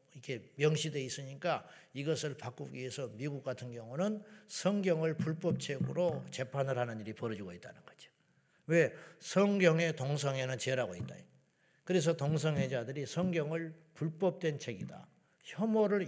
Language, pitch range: Korean, 140-180 Hz